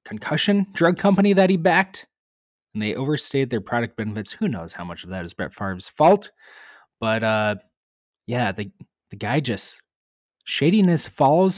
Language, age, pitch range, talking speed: English, 20-39, 105-155 Hz, 160 wpm